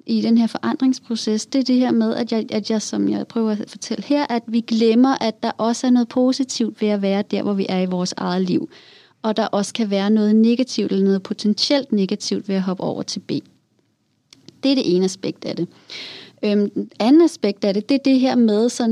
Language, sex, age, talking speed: Danish, female, 30-49, 235 wpm